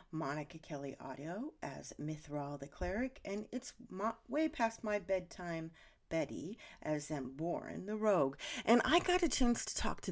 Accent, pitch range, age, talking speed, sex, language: American, 150-210 Hz, 40-59, 155 wpm, female, English